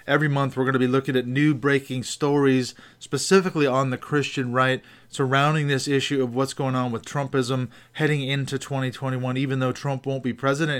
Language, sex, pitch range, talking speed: English, male, 125-140 Hz, 190 wpm